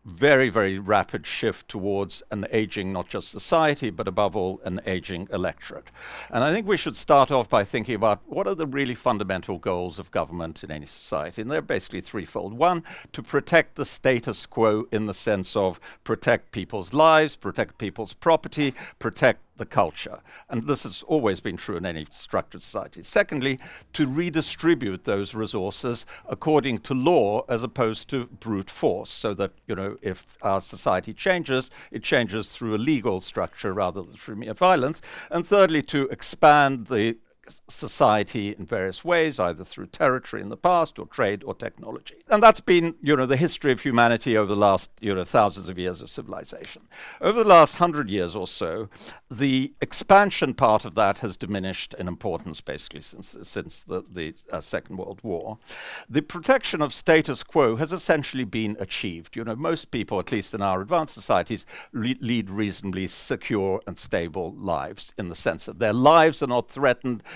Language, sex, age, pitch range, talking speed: English, male, 50-69, 100-155 Hz, 180 wpm